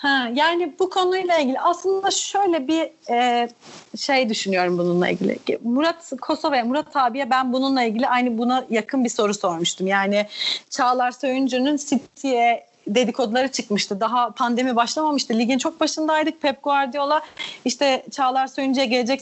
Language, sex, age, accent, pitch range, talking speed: Turkish, female, 30-49, native, 225-290 Hz, 135 wpm